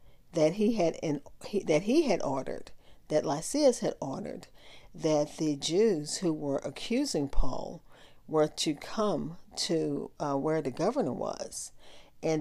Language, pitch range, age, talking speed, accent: English, 150-195 Hz, 50-69, 145 wpm, American